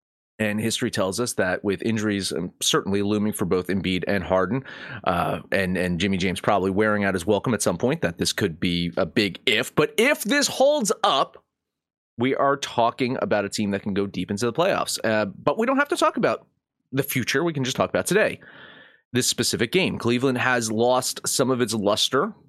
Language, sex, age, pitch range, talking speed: English, male, 30-49, 100-155 Hz, 210 wpm